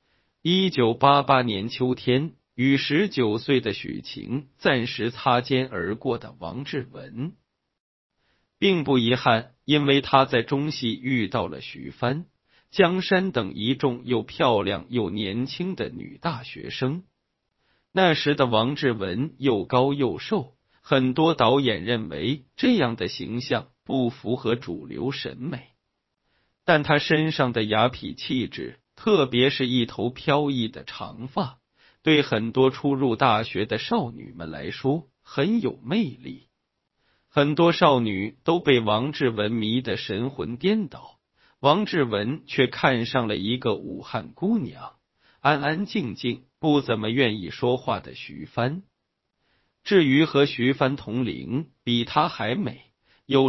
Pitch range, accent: 120-145 Hz, native